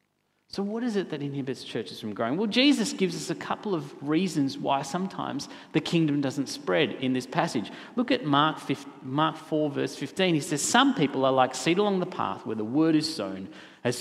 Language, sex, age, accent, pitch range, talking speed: English, male, 40-59, Australian, 135-180 Hz, 210 wpm